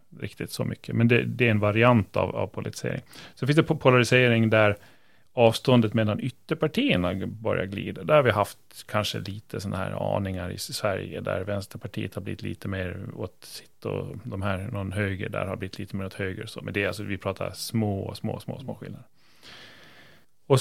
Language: Swedish